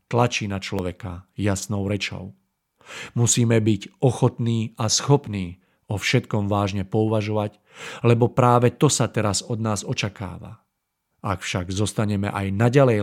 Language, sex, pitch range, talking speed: Czech, male, 95-115 Hz, 125 wpm